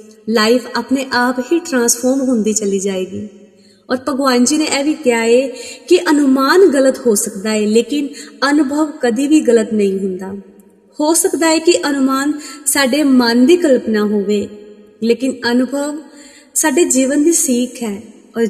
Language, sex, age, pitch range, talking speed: Punjabi, female, 30-49, 225-305 Hz, 145 wpm